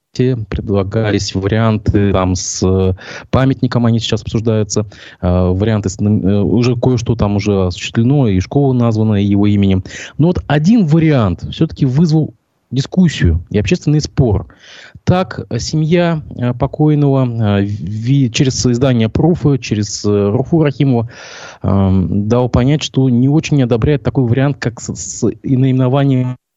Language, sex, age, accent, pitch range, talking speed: Russian, male, 20-39, native, 105-140 Hz, 115 wpm